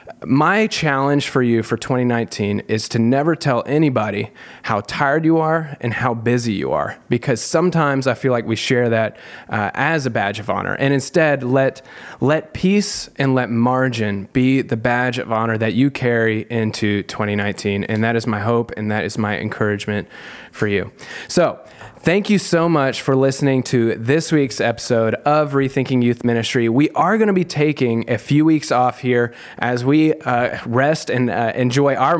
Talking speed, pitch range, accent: 185 wpm, 120-155 Hz, American